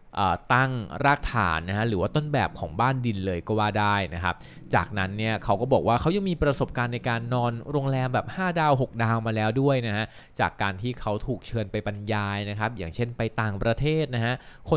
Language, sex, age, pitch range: Thai, male, 20-39, 100-130 Hz